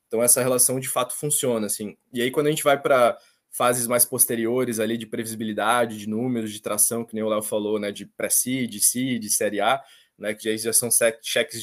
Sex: male